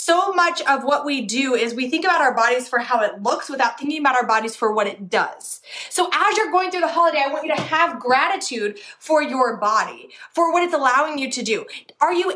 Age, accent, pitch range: 20-39, American, 270-350 Hz